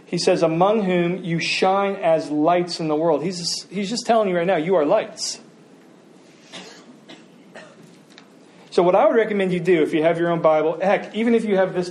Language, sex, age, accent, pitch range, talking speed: English, male, 40-59, American, 155-195 Hz, 200 wpm